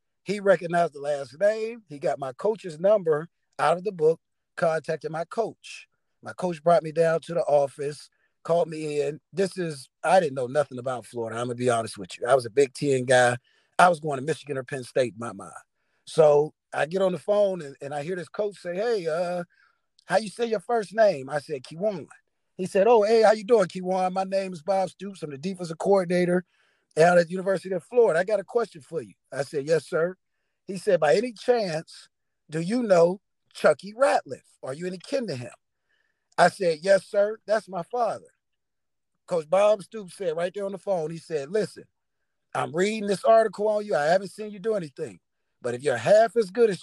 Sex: male